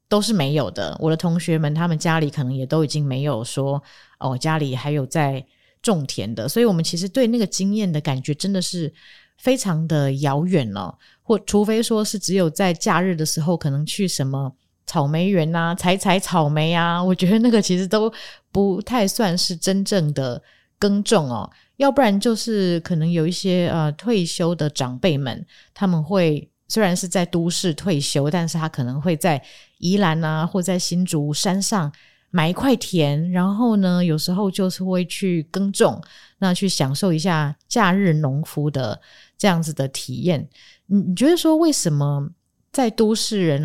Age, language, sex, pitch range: 20-39, Chinese, female, 150-195 Hz